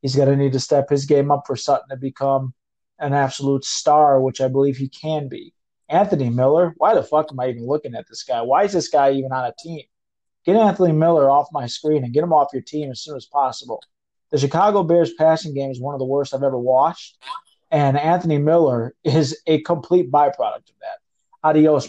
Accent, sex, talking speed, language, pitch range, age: American, male, 220 wpm, English, 135-170 Hz, 20-39